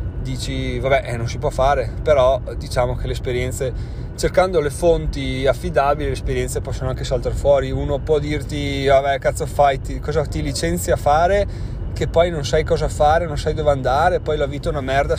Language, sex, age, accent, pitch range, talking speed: Italian, male, 30-49, native, 110-145 Hz, 200 wpm